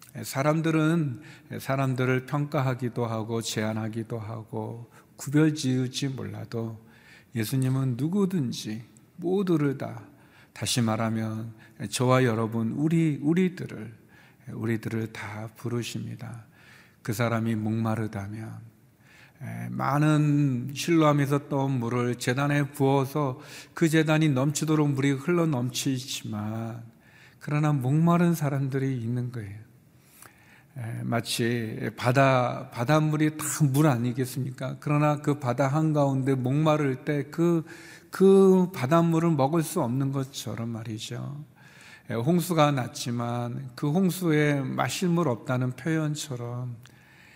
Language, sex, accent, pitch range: Korean, male, native, 115-150 Hz